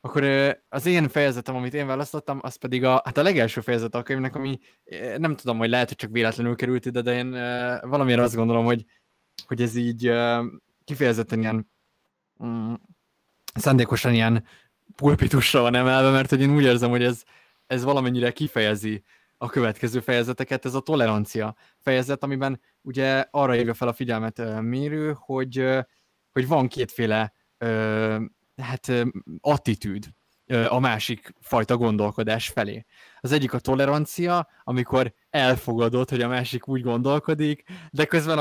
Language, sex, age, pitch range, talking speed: Hungarian, male, 20-39, 115-135 Hz, 140 wpm